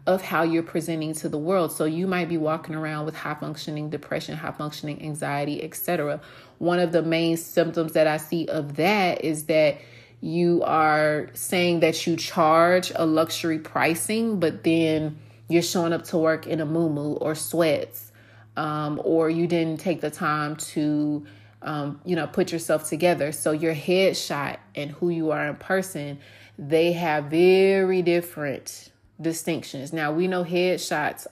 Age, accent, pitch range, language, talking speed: 30-49, American, 155-175 Hz, English, 165 wpm